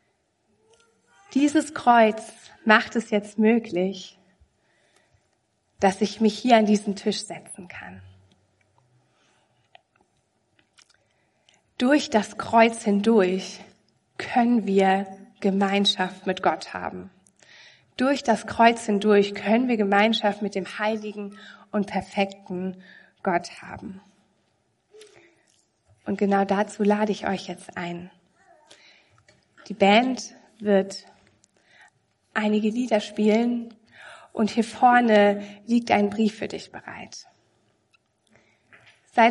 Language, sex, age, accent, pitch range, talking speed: German, female, 30-49, German, 190-225 Hz, 95 wpm